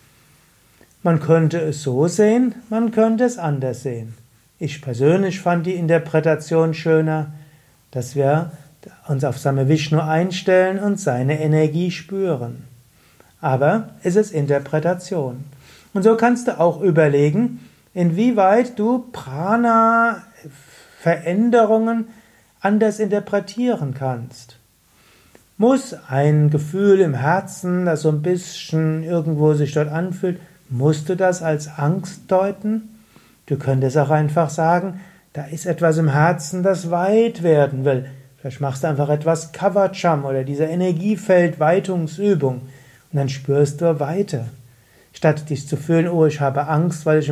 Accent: German